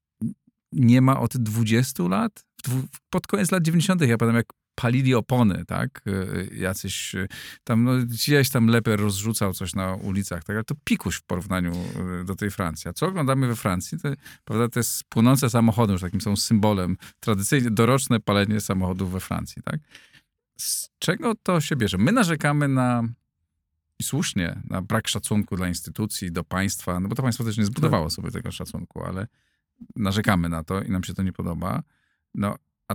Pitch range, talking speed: 95-130 Hz, 170 wpm